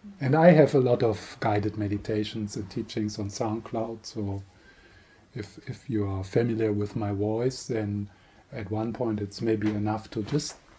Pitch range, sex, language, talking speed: 105-120 Hz, male, English, 165 wpm